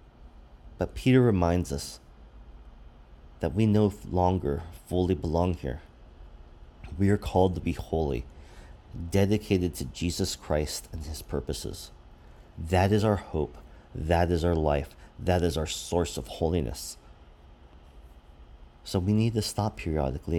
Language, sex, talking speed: English, male, 130 wpm